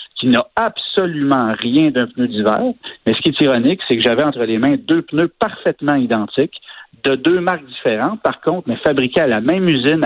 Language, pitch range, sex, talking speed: French, 120-165 Hz, male, 205 wpm